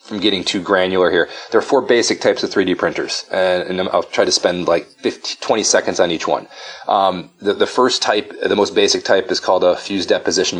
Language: English